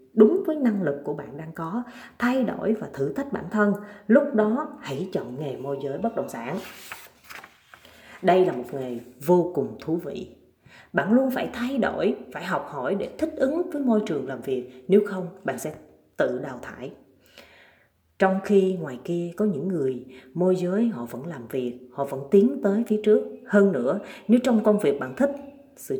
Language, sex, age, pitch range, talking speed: Vietnamese, female, 30-49, 145-230 Hz, 195 wpm